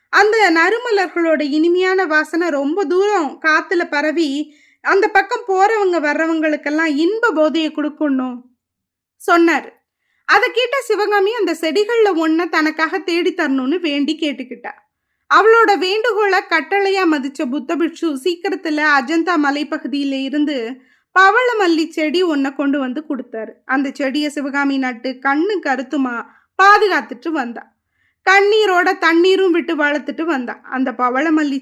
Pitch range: 285-380 Hz